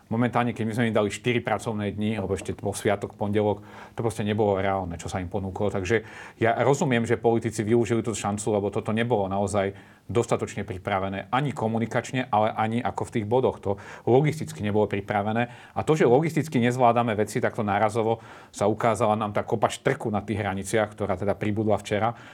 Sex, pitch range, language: male, 105-125 Hz, Slovak